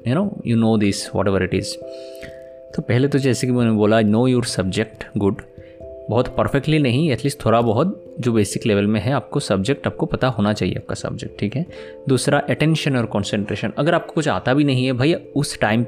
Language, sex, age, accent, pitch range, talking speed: Hindi, male, 20-39, native, 110-145 Hz, 210 wpm